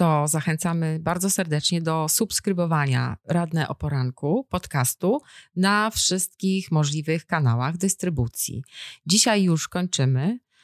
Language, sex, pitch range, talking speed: Polish, female, 145-190 Hz, 100 wpm